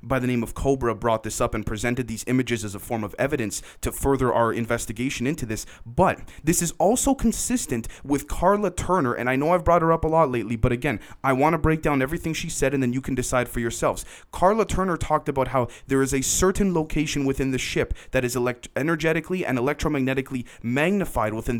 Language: English